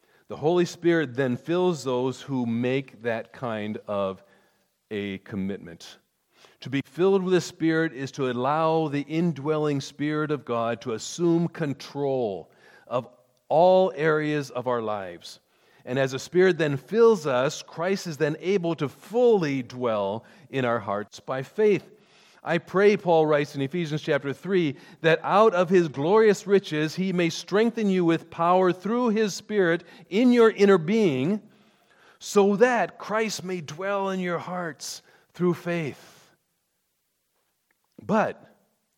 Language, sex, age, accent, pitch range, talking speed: English, male, 40-59, American, 125-180 Hz, 145 wpm